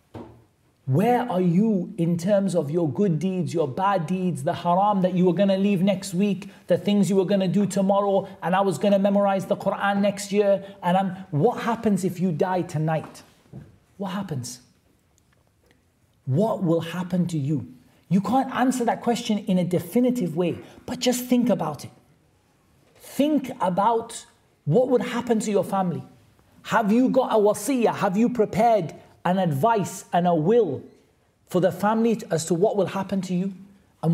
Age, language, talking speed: 40-59, English, 180 wpm